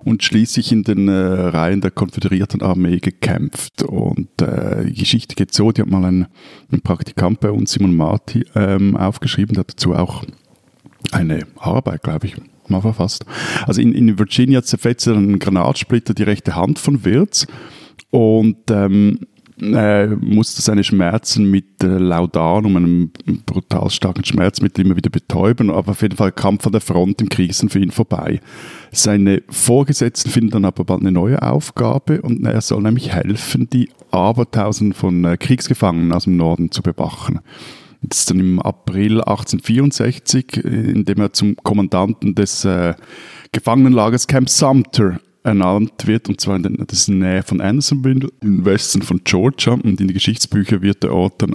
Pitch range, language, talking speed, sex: 95-115 Hz, German, 170 wpm, male